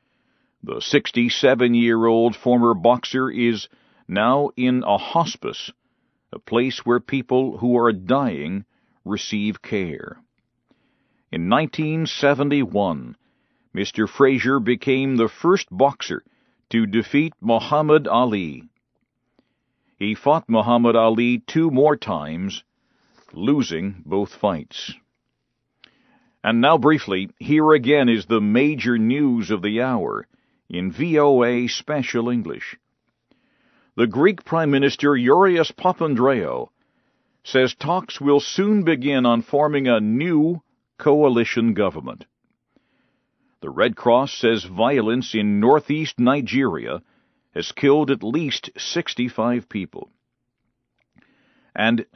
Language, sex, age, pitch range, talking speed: English, male, 50-69, 115-150 Hz, 100 wpm